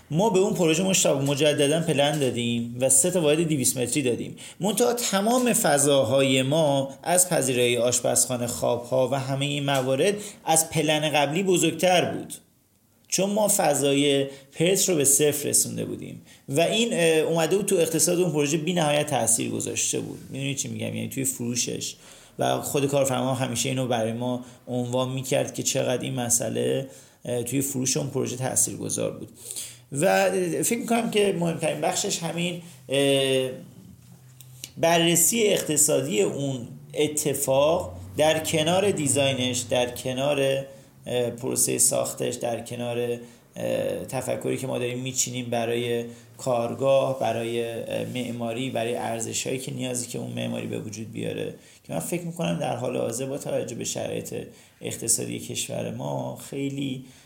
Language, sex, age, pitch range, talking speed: Persian, male, 40-59, 120-160 Hz, 140 wpm